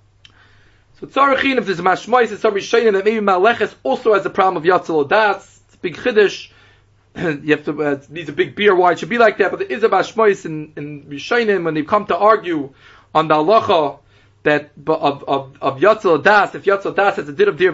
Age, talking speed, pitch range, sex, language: 30-49, 225 wpm, 165-240 Hz, male, English